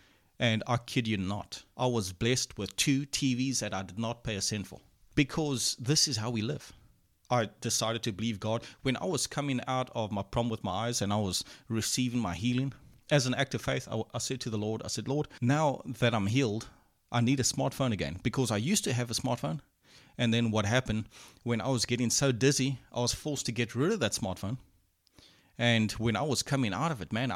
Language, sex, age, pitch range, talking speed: English, male, 30-49, 110-135 Hz, 230 wpm